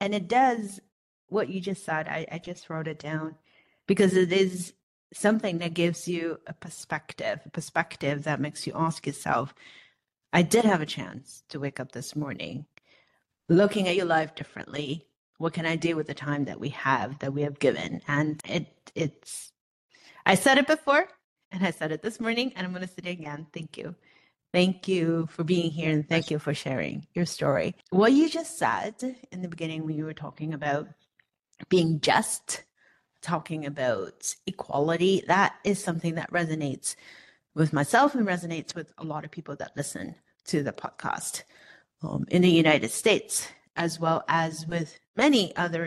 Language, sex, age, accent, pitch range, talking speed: English, female, 30-49, American, 150-185 Hz, 180 wpm